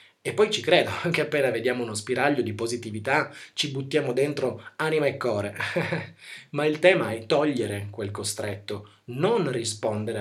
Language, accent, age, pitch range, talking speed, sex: Italian, native, 30-49, 115-180 Hz, 155 wpm, male